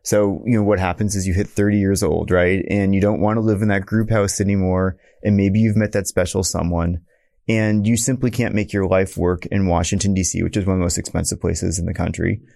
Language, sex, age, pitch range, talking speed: English, male, 30-49, 95-115 Hz, 250 wpm